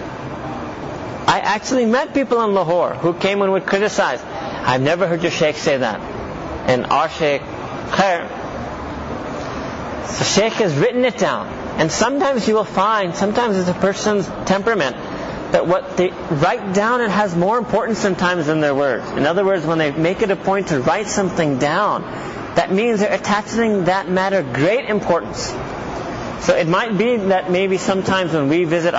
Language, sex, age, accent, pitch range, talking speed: English, male, 40-59, American, 165-205 Hz, 170 wpm